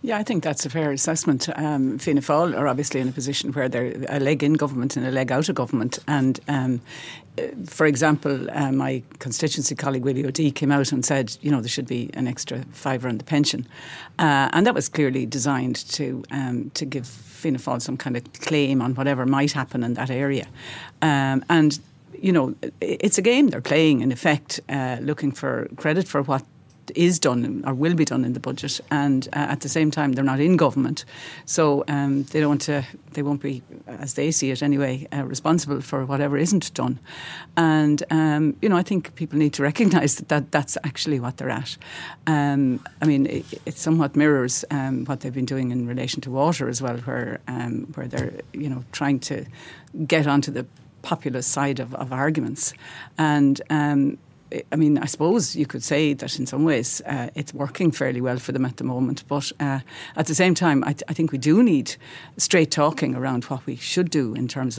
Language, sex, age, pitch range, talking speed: English, female, 60-79, 130-150 Hz, 210 wpm